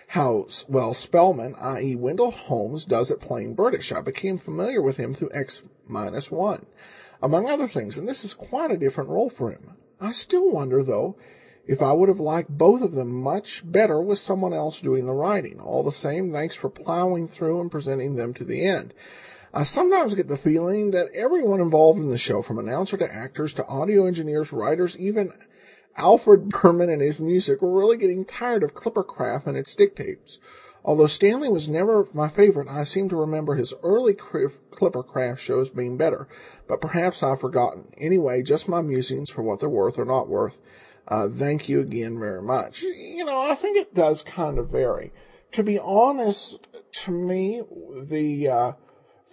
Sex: male